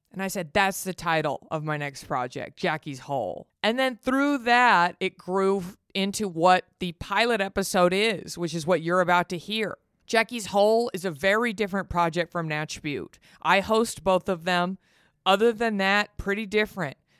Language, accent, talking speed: English, American, 180 wpm